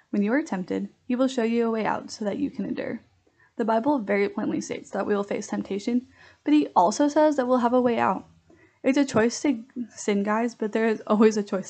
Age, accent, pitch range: 10-29, American, 210-275 Hz